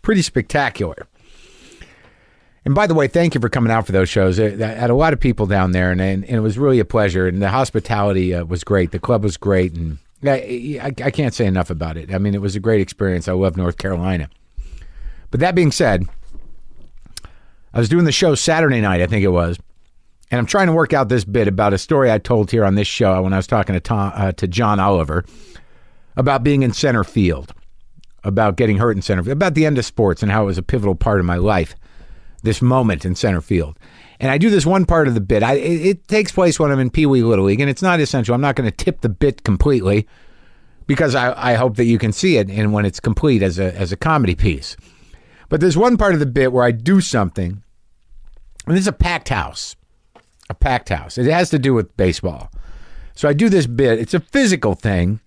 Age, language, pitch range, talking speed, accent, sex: 50-69, English, 95-135 Hz, 230 wpm, American, male